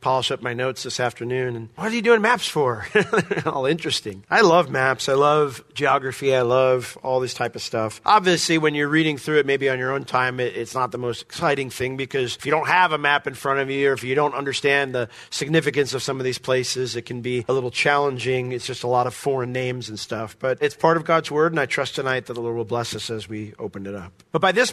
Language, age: English, 40-59